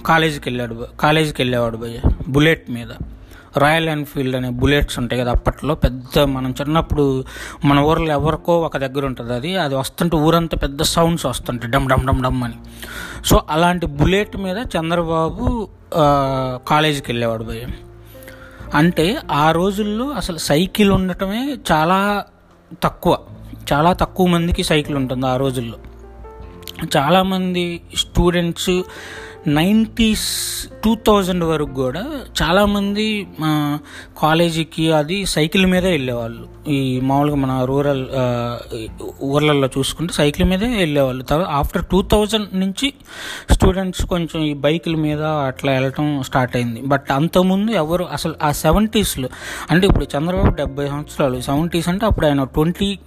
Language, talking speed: Telugu, 125 wpm